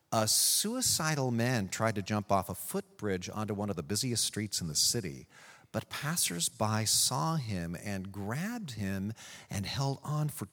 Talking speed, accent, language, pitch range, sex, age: 165 wpm, American, English, 105-140 Hz, male, 40-59